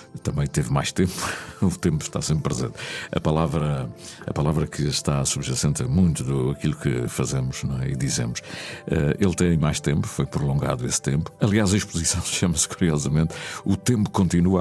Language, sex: Portuguese, male